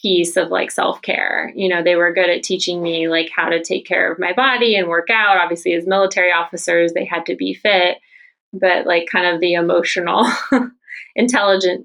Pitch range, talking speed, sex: 170-195 Hz, 205 wpm, female